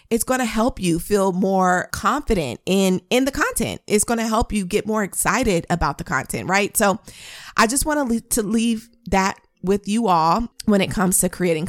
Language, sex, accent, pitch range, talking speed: English, female, American, 185-235 Hz, 210 wpm